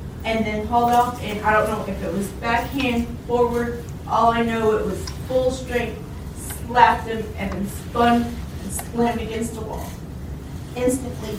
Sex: female